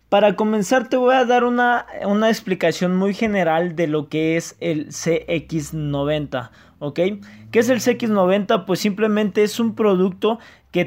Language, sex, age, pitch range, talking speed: Spanish, male, 20-39, 165-210 Hz, 165 wpm